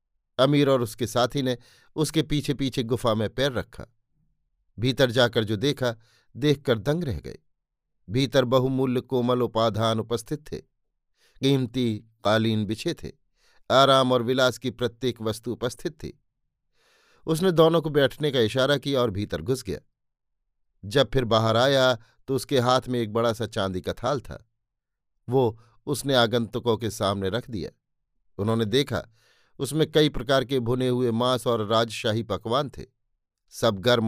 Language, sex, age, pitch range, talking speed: Hindi, male, 50-69, 115-135 Hz, 150 wpm